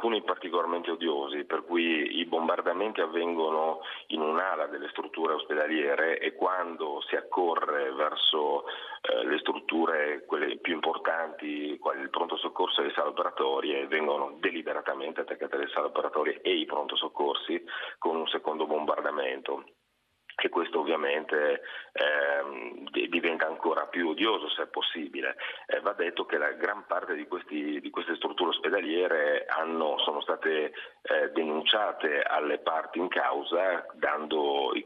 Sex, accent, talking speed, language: male, native, 140 wpm, Italian